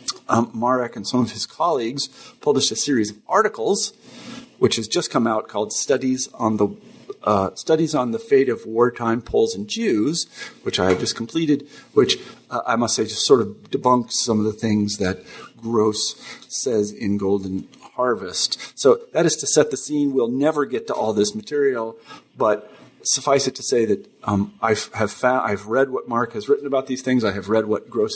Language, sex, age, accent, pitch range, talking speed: English, male, 40-59, American, 110-130 Hz, 200 wpm